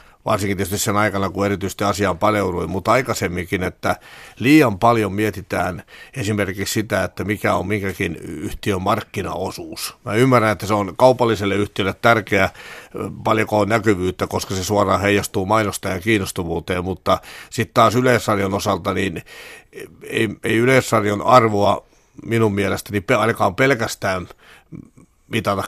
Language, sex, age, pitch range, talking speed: Finnish, male, 60-79, 95-110 Hz, 130 wpm